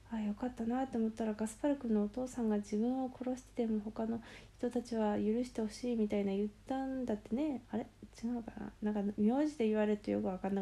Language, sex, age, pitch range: Japanese, female, 20-39, 205-245 Hz